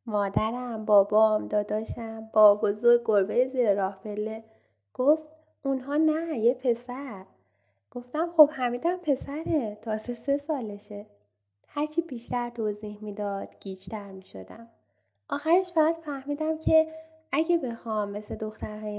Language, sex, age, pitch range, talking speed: Persian, female, 10-29, 205-275 Hz, 110 wpm